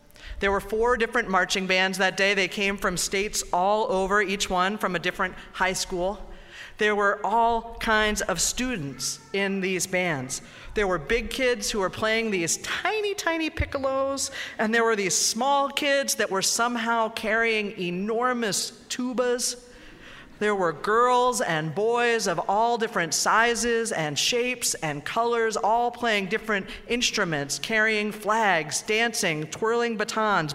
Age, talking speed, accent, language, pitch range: 40-59, 145 wpm, American, English, 185-230 Hz